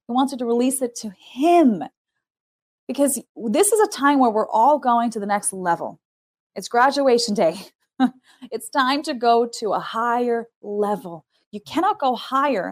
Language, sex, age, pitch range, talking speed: English, female, 20-39, 210-270 Hz, 170 wpm